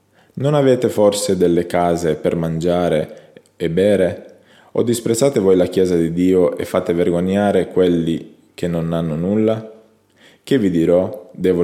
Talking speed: 145 wpm